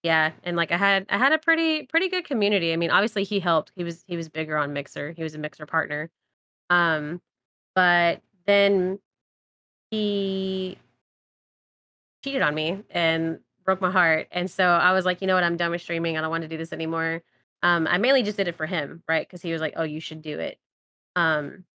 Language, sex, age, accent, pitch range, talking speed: English, female, 20-39, American, 160-190 Hz, 215 wpm